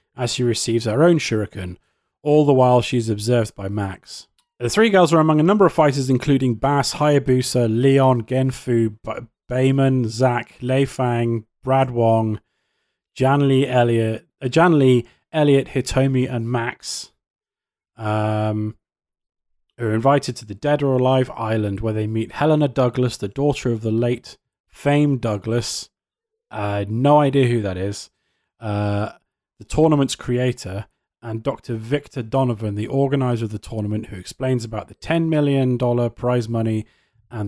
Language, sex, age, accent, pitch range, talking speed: English, male, 30-49, British, 110-135 Hz, 150 wpm